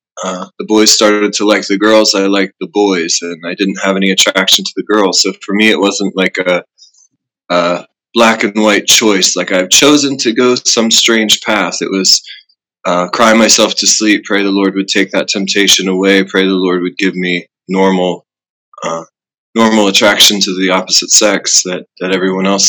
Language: English